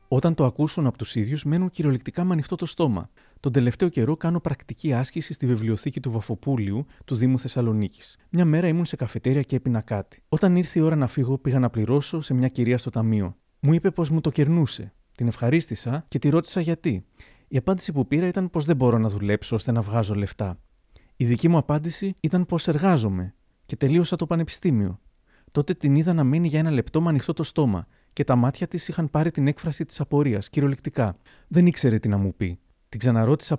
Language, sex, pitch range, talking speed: Greek, male, 115-160 Hz, 200 wpm